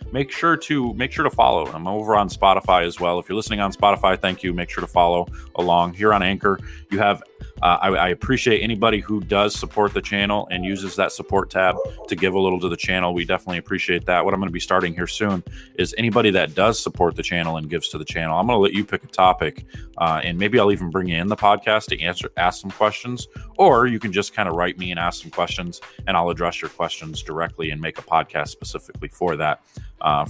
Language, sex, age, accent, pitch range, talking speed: English, male, 30-49, American, 85-105 Hz, 250 wpm